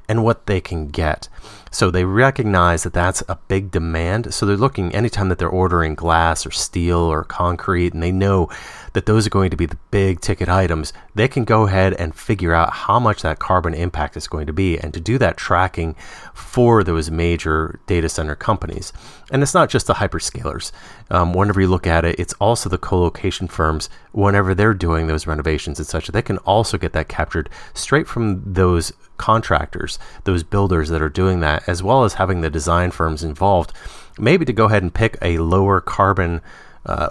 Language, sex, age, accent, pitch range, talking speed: English, male, 30-49, American, 80-100 Hz, 200 wpm